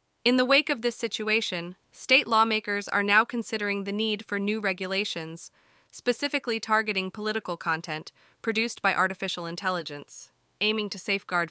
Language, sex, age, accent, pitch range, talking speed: English, female, 20-39, American, 170-215 Hz, 140 wpm